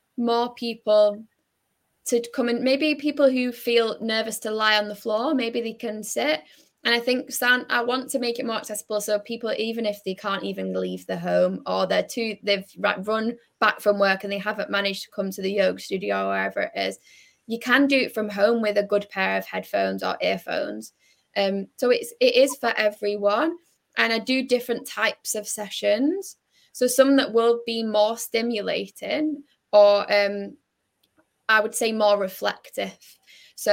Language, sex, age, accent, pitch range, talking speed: English, female, 10-29, British, 200-235 Hz, 190 wpm